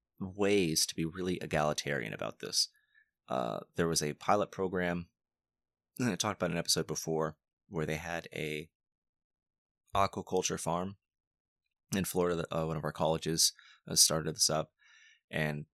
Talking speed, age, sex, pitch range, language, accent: 140 wpm, 20-39, male, 75-85 Hz, English, American